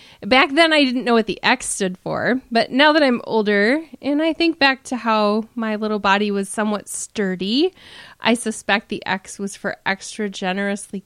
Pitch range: 195-255 Hz